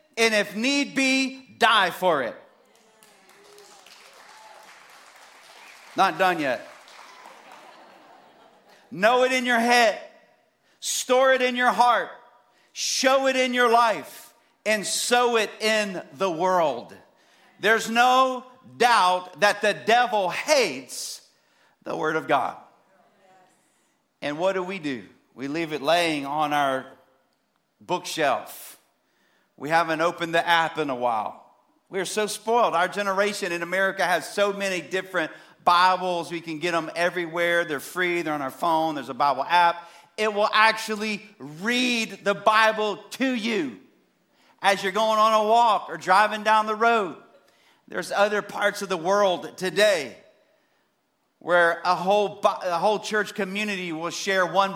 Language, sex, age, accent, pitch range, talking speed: English, male, 50-69, American, 175-230 Hz, 135 wpm